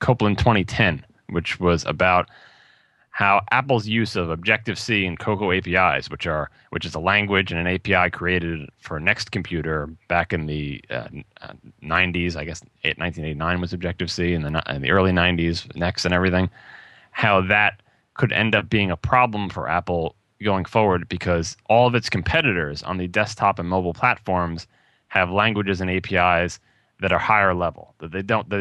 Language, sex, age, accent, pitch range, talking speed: English, male, 30-49, American, 85-100 Hz, 175 wpm